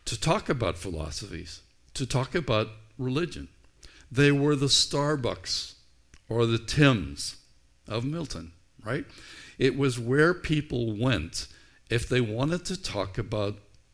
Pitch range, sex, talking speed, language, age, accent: 95-130 Hz, male, 125 wpm, English, 60-79, American